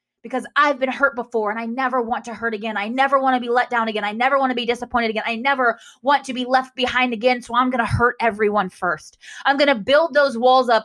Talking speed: 270 wpm